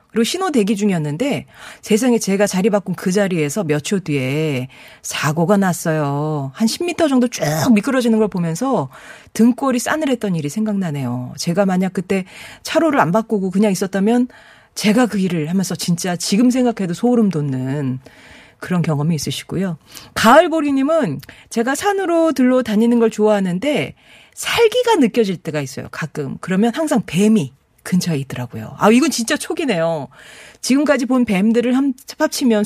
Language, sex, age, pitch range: Korean, female, 40-59, 165-250 Hz